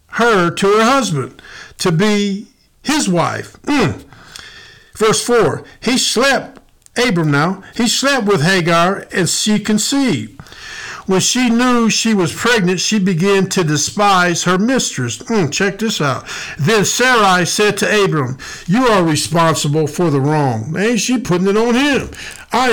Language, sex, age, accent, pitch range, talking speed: English, male, 50-69, American, 160-215 Hz, 150 wpm